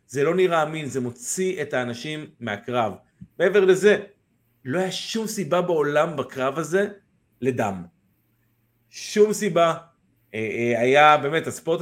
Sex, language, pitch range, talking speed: male, Hebrew, 120-175 Hz, 120 wpm